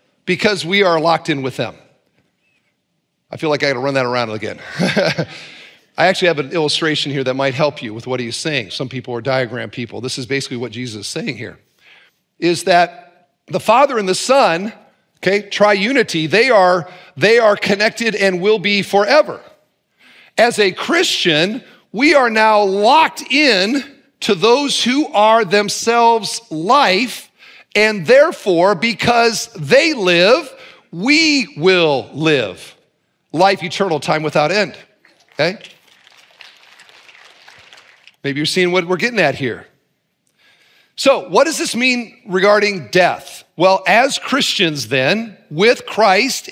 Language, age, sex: English, 40-59, male